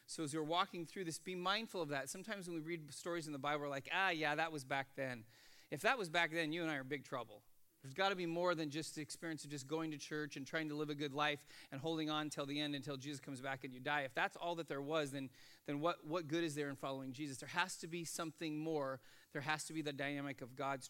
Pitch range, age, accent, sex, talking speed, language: 140-175 Hz, 30-49, American, male, 290 wpm, English